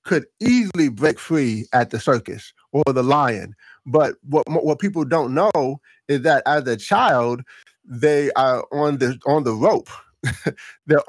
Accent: American